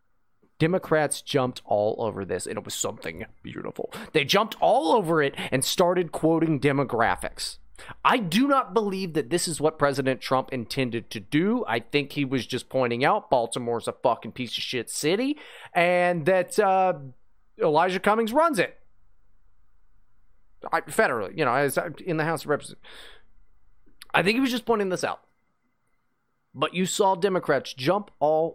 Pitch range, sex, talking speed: 135-210 Hz, male, 165 wpm